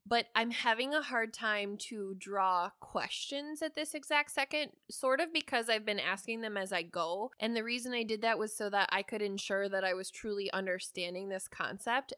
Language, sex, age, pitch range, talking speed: English, female, 20-39, 195-235 Hz, 205 wpm